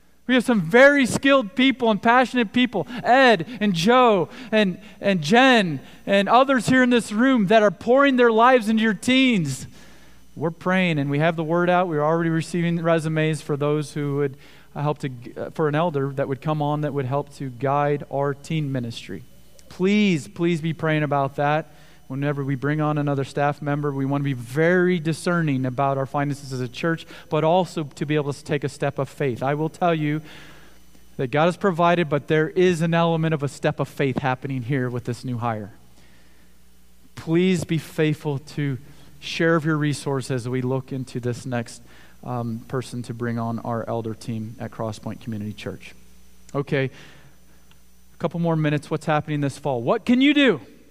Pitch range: 135-175 Hz